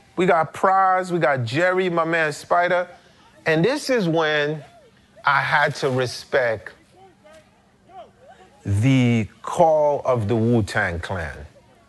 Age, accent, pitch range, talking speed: 30-49, American, 120-190 Hz, 115 wpm